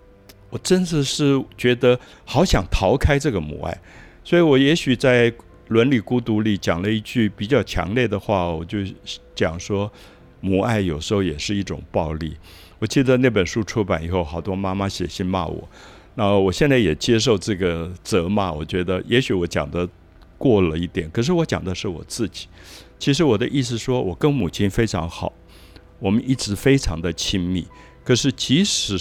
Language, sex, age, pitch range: Chinese, male, 60-79, 85-115 Hz